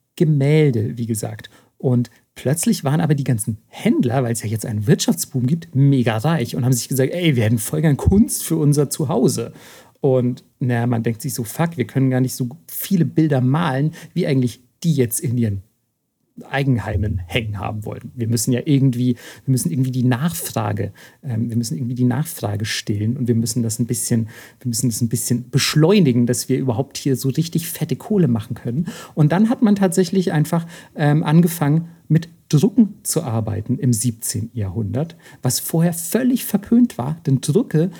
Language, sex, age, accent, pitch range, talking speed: German, male, 40-59, German, 120-165 Hz, 185 wpm